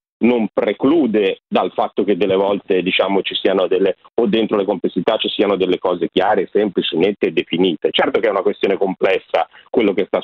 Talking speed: 195 wpm